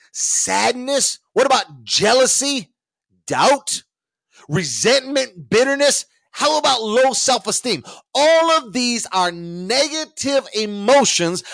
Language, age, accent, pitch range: English, 40-59, American, 195-275 Hz